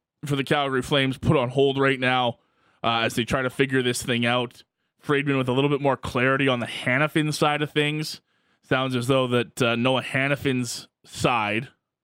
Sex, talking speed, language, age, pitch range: male, 195 wpm, English, 20-39, 120-140 Hz